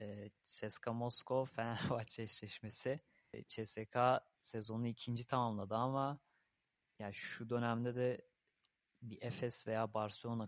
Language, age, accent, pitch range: Turkish, 30-49, native, 115-125 Hz